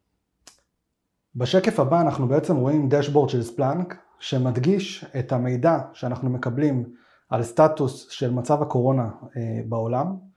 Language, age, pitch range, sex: Hebrew, 30-49, 125-155 Hz, male